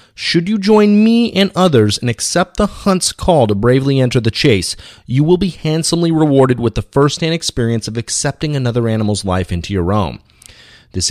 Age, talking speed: 30-49, 185 wpm